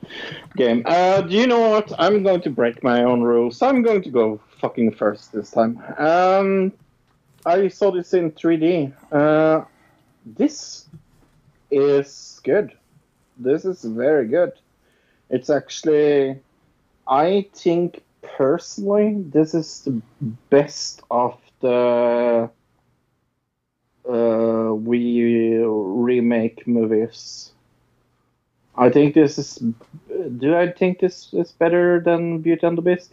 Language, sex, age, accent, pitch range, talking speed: English, male, 50-69, Norwegian, 120-170 Hz, 120 wpm